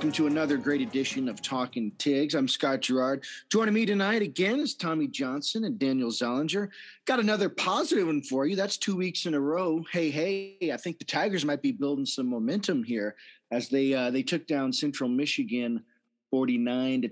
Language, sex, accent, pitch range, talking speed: English, male, American, 125-205 Hz, 190 wpm